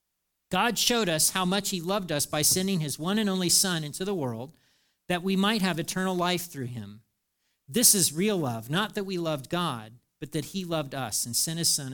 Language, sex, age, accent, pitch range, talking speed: English, male, 40-59, American, 130-185 Hz, 220 wpm